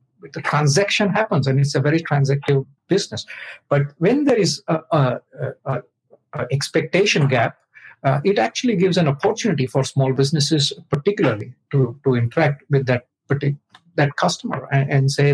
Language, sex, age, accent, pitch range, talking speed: English, male, 50-69, Indian, 135-170 Hz, 155 wpm